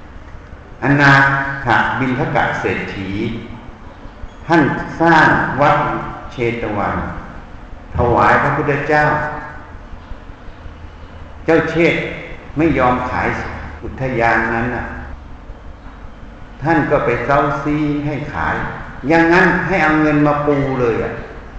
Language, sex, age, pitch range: Thai, male, 60-79, 95-145 Hz